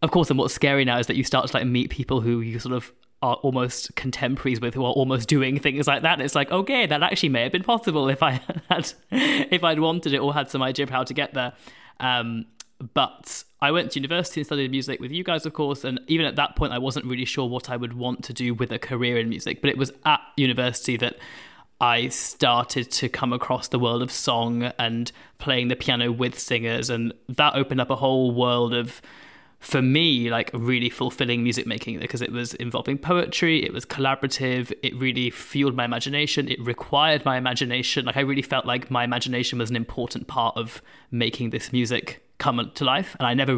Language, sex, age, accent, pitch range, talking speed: English, male, 20-39, British, 120-145 Hz, 225 wpm